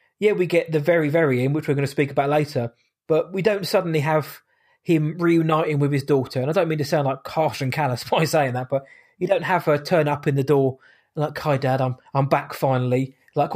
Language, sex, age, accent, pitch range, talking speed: English, male, 20-39, British, 145-185 Hz, 250 wpm